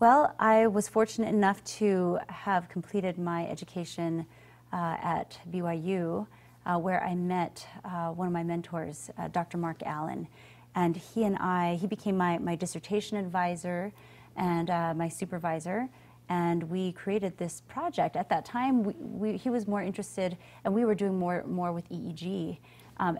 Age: 30-49